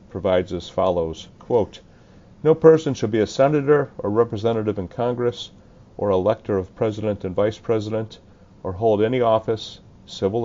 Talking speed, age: 145 wpm, 40-59